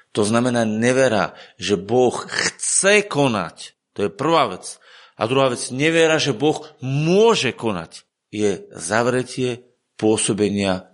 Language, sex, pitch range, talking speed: Slovak, male, 115-175 Hz, 120 wpm